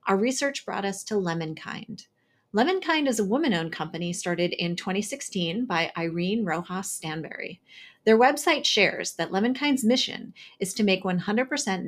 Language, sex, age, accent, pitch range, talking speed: English, female, 30-49, American, 175-230 Hz, 145 wpm